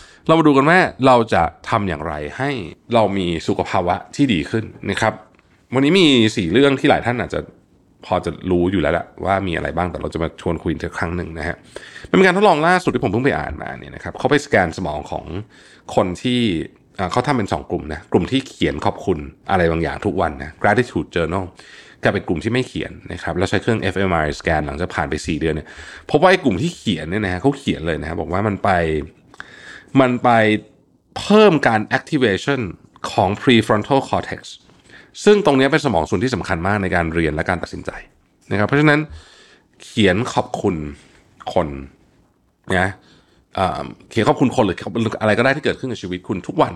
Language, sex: Thai, male